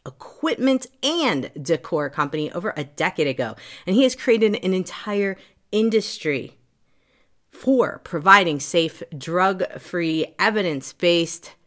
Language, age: English, 30-49